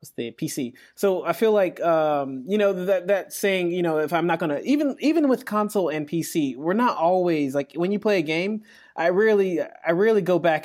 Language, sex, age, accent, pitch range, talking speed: English, male, 20-39, American, 140-185 Hz, 230 wpm